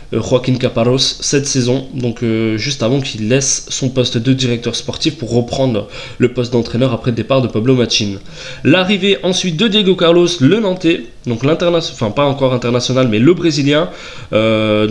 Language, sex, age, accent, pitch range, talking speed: French, male, 20-39, French, 115-150 Hz, 170 wpm